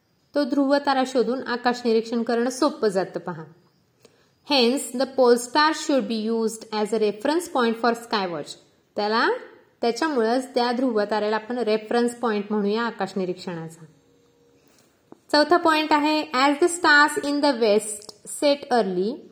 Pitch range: 210-280 Hz